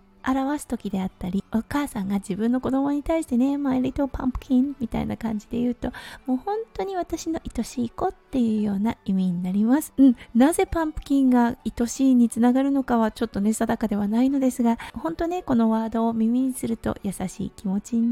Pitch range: 225-310 Hz